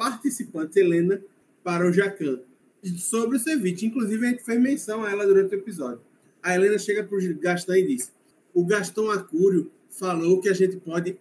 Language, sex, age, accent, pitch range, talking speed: Portuguese, male, 20-39, Brazilian, 175-245 Hz, 175 wpm